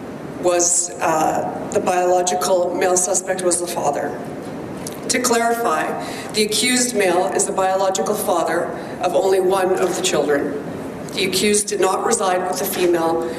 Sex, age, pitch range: female, 40-59, 180-205 Hz